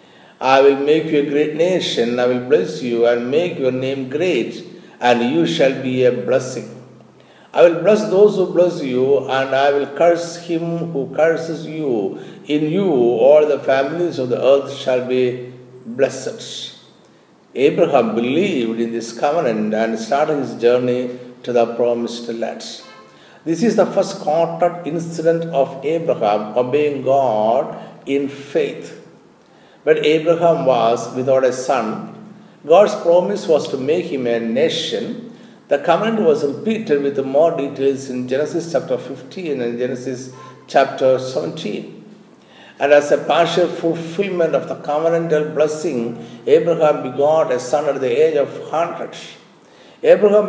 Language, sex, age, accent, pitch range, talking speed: Malayalam, male, 50-69, native, 125-165 Hz, 145 wpm